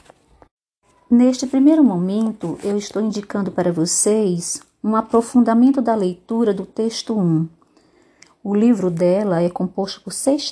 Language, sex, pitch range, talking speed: Portuguese, female, 190-250 Hz, 125 wpm